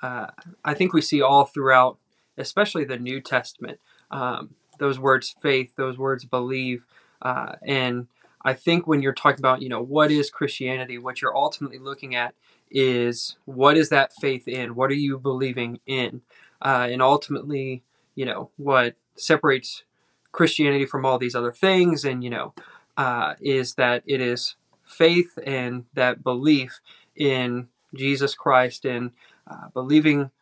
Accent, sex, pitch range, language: American, male, 130-145 Hz, English